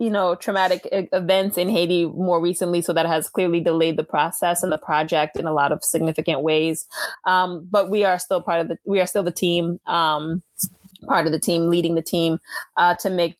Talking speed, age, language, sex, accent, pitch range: 215 wpm, 20-39, English, female, American, 160-185 Hz